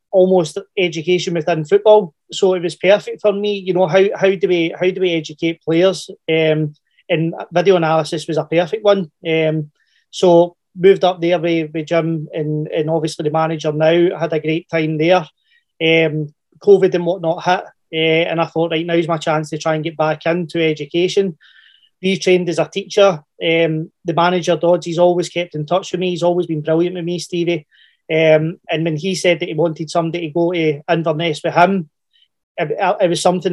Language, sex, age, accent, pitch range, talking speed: English, male, 30-49, British, 160-185 Hz, 200 wpm